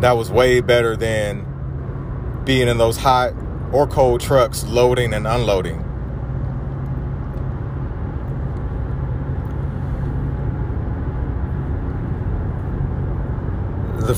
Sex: male